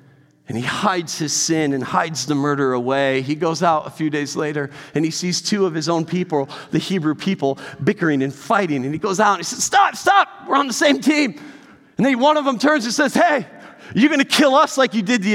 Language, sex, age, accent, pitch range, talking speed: English, male, 40-59, American, 145-215 Hz, 240 wpm